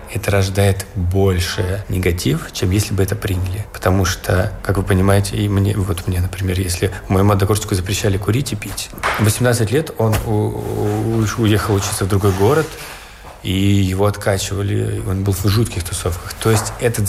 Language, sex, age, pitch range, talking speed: Russian, male, 20-39, 100-110 Hz, 170 wpm